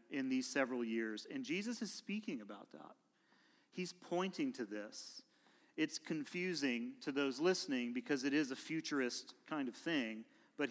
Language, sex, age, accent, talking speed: English, male, 40-59, American, 155 wpm